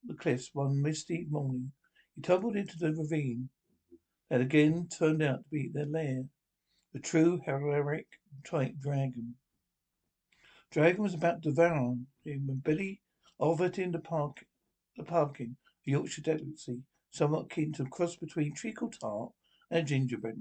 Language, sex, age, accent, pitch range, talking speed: English, male, 60-79, British, 140-165 Hz, 140 wpm